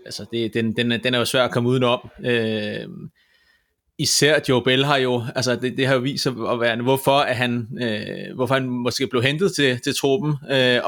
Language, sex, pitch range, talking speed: Danish, male, 120-140 Hz, 210 wpm